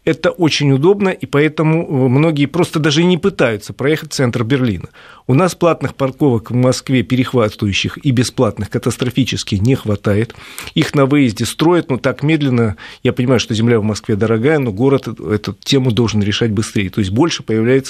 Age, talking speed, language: 40-59, 170 wpm, Russian